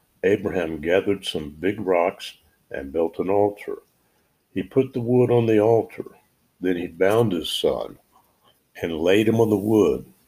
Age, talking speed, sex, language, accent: 60-79, 160 wpm, male, English, American